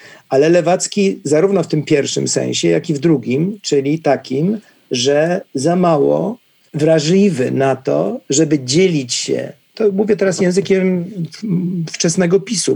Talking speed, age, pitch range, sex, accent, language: 130 wpm, 50-69, 140-180 Hz, male, native, Polish